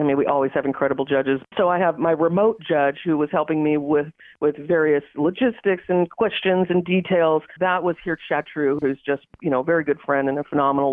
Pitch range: 145-185 Hz